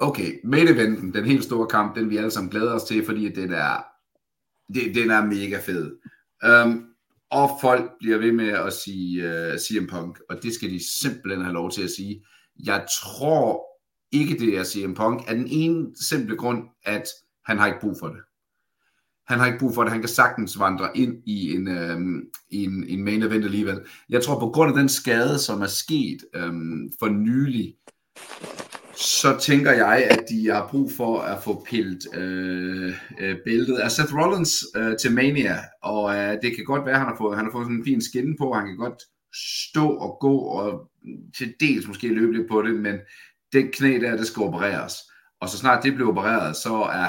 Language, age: Danish, 60-79